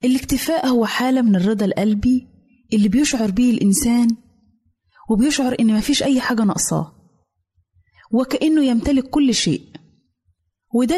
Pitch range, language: 200-260 Hz, Arabic